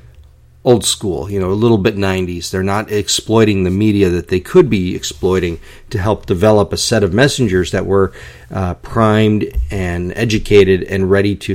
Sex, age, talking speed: male, 40-59, 175 wpm